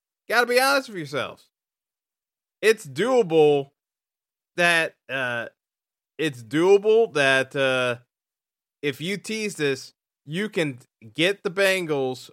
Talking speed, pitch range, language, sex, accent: 105 wpm, 150-205 Hz, English, male, American